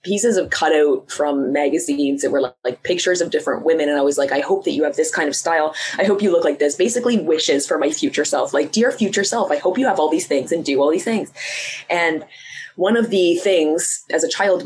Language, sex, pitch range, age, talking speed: English, female, 145-195 Hz, 20-39, 255 wpm